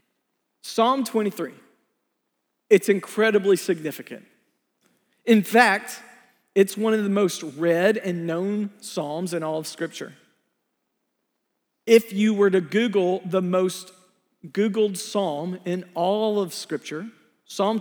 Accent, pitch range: American, 170-210 Hz